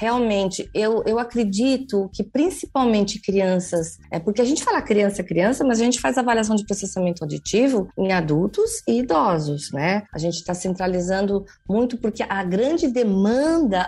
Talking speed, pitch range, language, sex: 150 wpm, 190-255 Hz, Portuguese, female